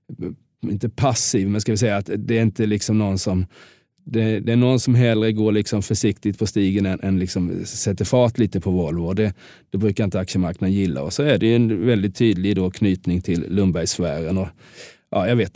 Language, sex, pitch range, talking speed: Swedish, male, 95-110 Hz, 210 wpm